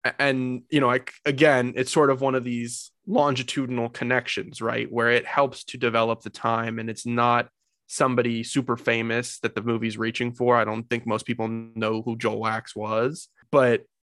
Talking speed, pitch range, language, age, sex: 185 wpm, 115-140 Hz, English, 20-39, male